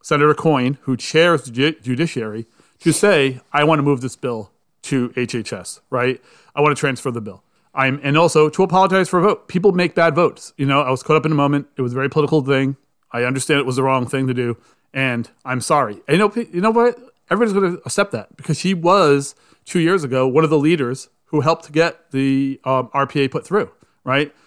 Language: English